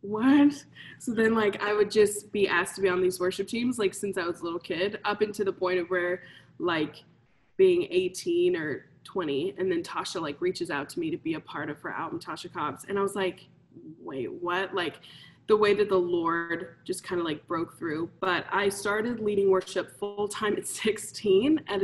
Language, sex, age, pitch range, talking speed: English, female, 20-39, 180-215 Hz, 215 wpm